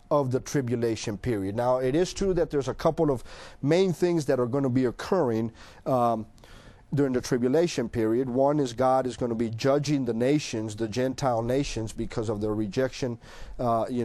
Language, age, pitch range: English, 40-59, 125-165 Hz